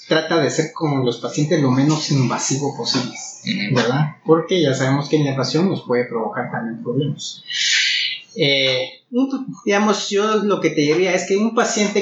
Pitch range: 135-170 Hz